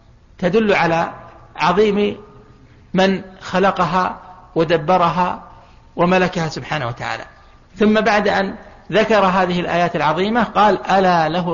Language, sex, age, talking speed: Arabic, male, 60-79, 100 wpm